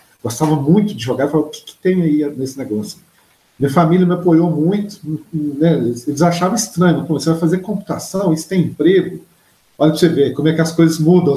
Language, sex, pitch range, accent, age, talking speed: Portuguese, male, 145-175 Hz, Brazilian, 40-59, 195 wpm